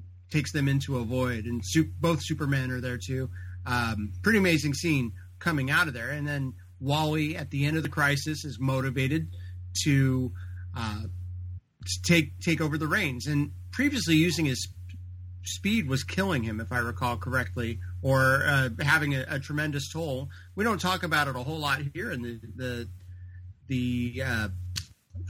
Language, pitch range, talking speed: English, 105-145 Hz, 175 wpm